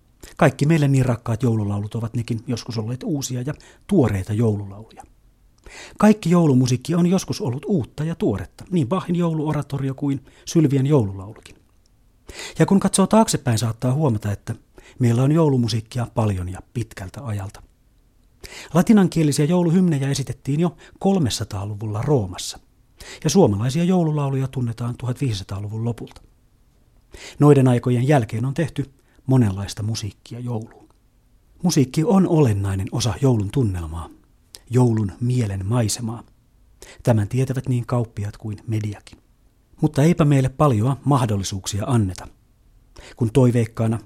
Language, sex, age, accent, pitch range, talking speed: Finnish, male, 40-59, native, 110-140 Hz, 115 wpm